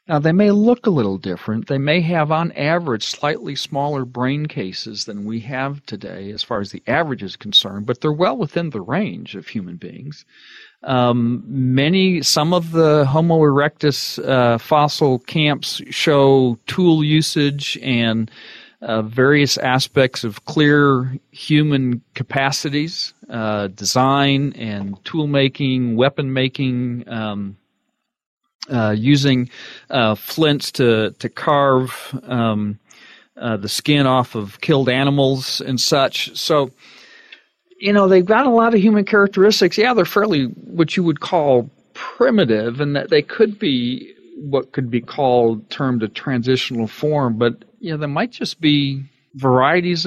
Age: 40-59